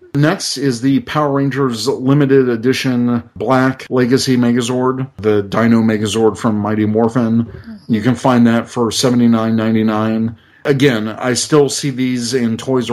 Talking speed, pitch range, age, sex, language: 150 wpm, 110-130 Hz, 40-59, male, English